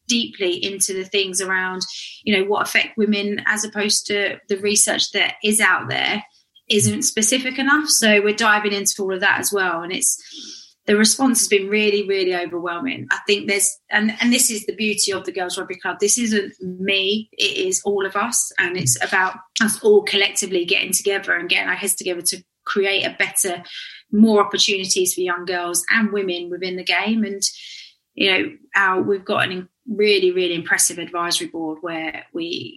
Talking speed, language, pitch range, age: 185 wpm, English, 185-215 Hz, 20-39